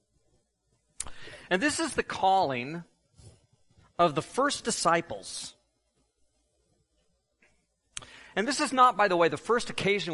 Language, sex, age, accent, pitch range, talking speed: English, male, 40-59, American, 135-200 Hz, 110 wpm